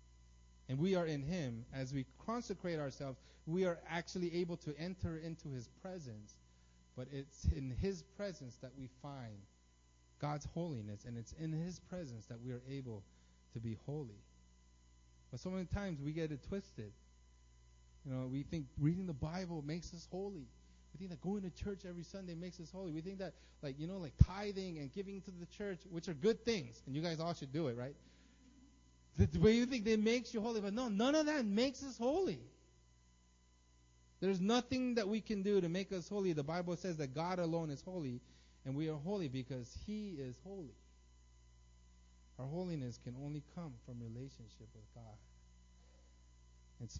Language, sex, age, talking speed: English, male, 30-49, 185 wpm